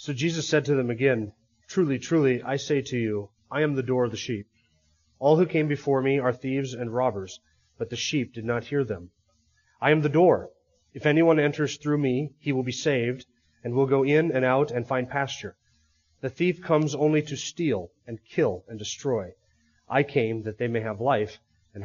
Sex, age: male, 30-49